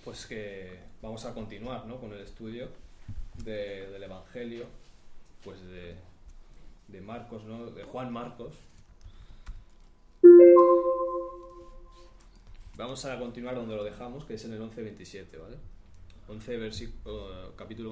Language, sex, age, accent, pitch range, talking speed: Spanish, male, 20-39, Spanish, 90-115 Hz, 115 wpm